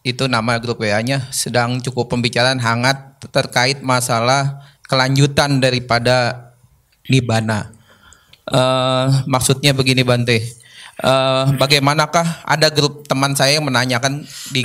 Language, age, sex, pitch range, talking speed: Indonesian, 20-39, male, 125-145 Hz, 110 wpm